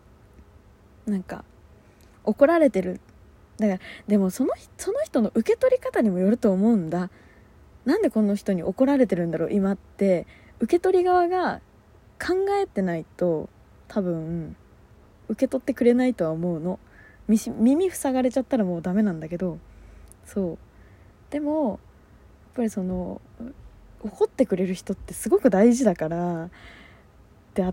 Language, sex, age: Japanese, female, 20-39